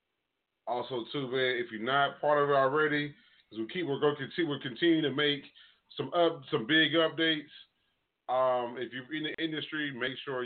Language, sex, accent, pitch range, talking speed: English, male, American, 120-150 Hz, 190 wpm